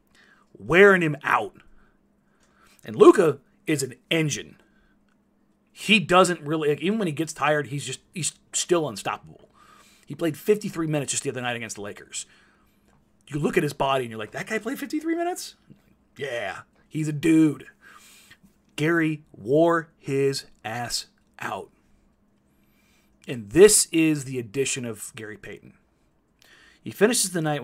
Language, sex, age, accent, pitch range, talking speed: English, male, 30-49, American, 140-190 Hz, 145 wpm